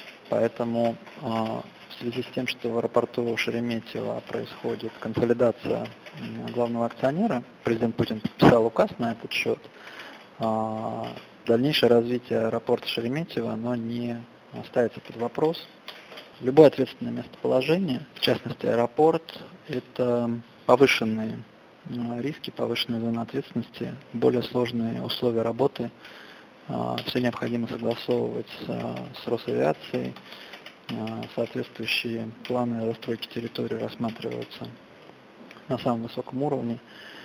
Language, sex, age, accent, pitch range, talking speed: Russian, male, 20-39, native, 115-125 Hz, 95 wpm